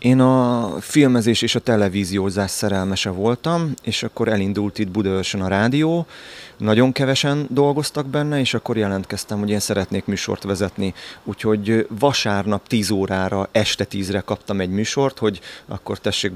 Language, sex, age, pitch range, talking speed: Hungarian, male, 30-49, 100-115 Hz, 145 wpm